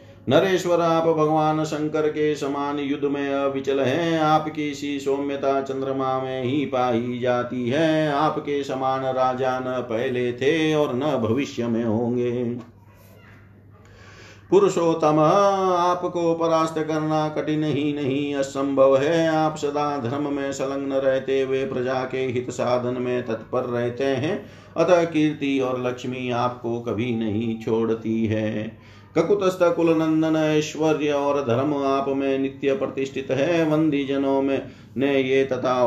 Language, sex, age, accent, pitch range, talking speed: Hindi, male, 50-69, native, 120-150 Hz, 135 wpm